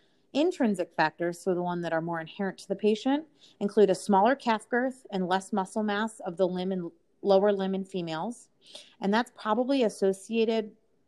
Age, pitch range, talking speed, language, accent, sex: 30-49, 170-205 Hz, 180 wpm, English, American, female